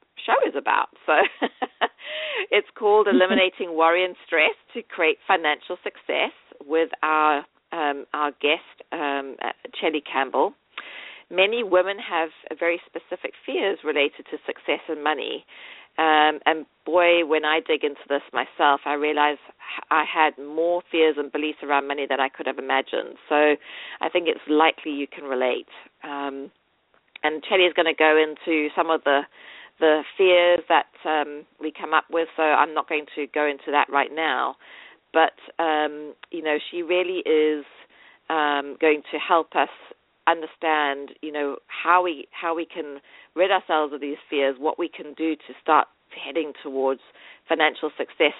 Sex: female